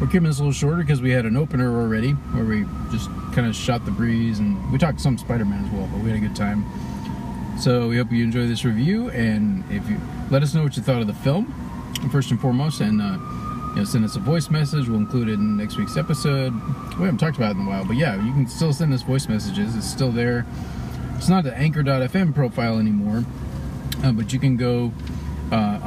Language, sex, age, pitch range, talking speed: English, male, 40-59, 110-140 Hz, 240 wpm